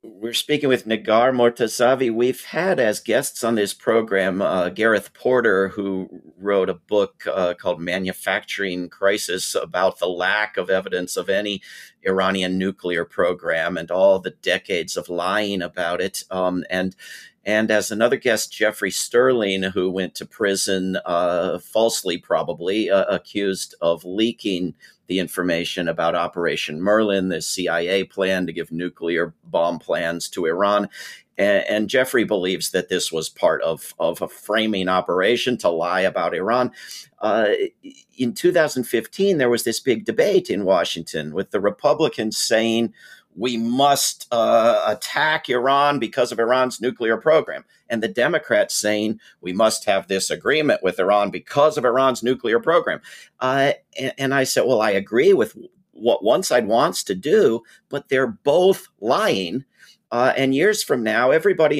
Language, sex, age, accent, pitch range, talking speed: English, male, 50-69, American, 95-130 Hz, 150 wpm